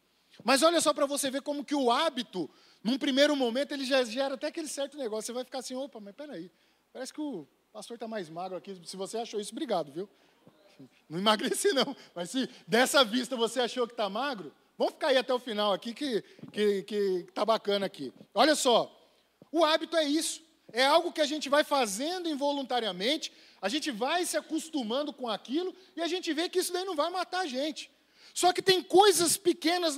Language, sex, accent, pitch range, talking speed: Portuguese, male, Brazilian, 230-300 Hz, 210 wpm